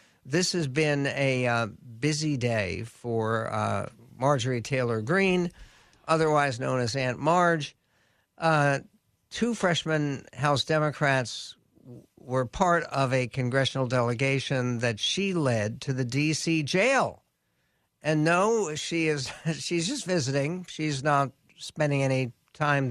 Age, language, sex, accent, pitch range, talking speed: 60-79, English, male, American, 125-155 Hz, 125 wpm